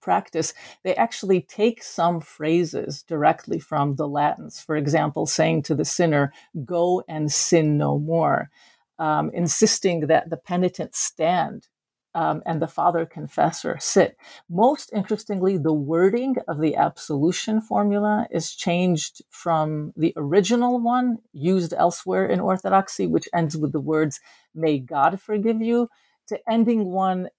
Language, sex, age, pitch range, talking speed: English, female, 50-69, 155-210 Hz, 140 wpm